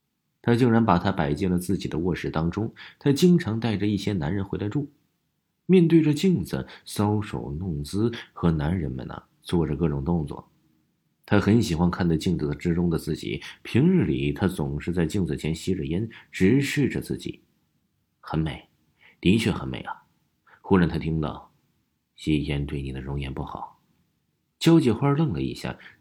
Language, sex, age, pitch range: Chinese, male, 50-69, 85-125 Hz